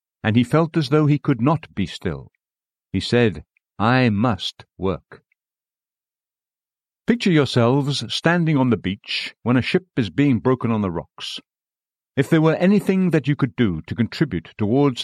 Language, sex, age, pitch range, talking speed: English, male, 50-69, 105-140 Hz, 165 wpm